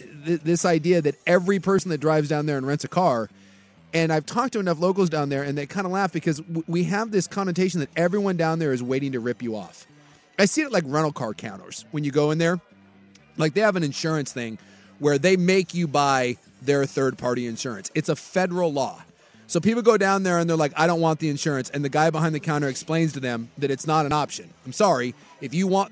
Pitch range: 145-195 Hz